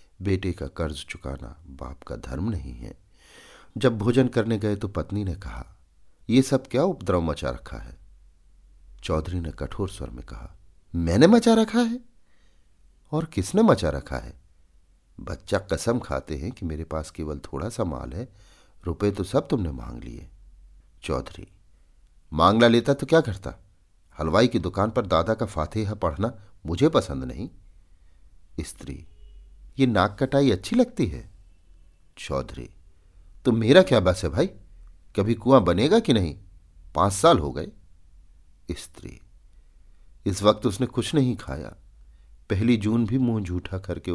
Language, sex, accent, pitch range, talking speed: Hindi, male, native, 75-105 Hz, 150 wpm